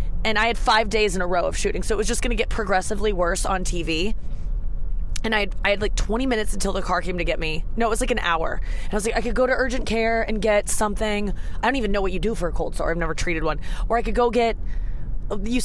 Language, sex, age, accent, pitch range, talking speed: English, female, 20-39, American, 185-240 Hz, 290 wpm